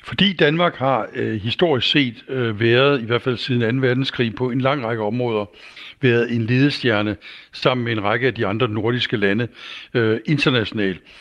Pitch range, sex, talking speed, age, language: 120-145 Hz, male, 175 wpm, 60-79, Danish